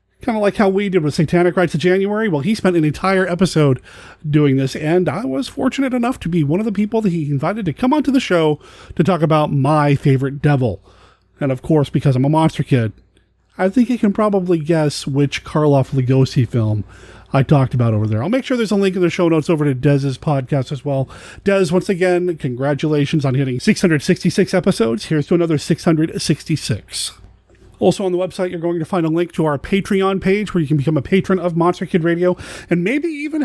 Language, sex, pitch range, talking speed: English, male, 140-195 Hz, 220 wpm